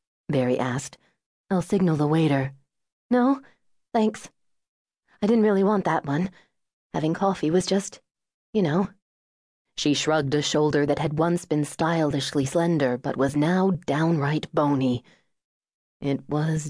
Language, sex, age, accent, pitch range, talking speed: English, female, 30-49, American, 140-195 Hz, 135 wpm